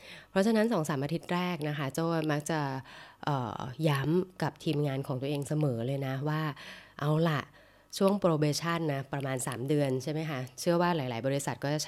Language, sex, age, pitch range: Thai, female, 20-39, 135-175 Hz